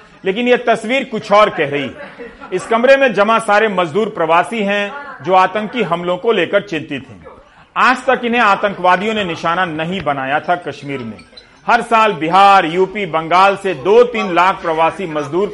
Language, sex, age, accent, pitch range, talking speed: Hindi, male, 40-59, native, 165-220 Hz, 175 wpm